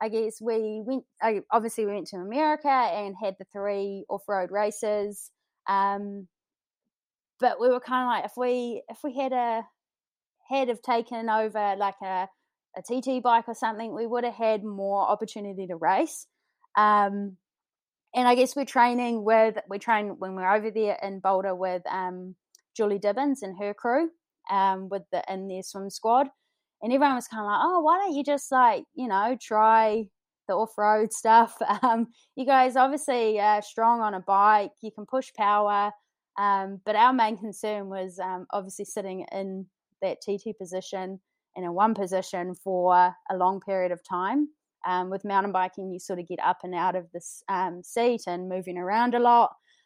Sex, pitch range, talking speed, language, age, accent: female, 195-245 Hz, 180 wpm, English, 20-39, Australian